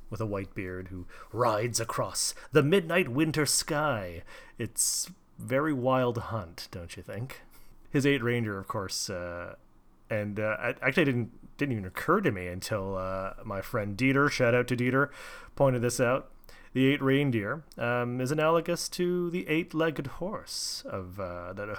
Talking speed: 165 wpm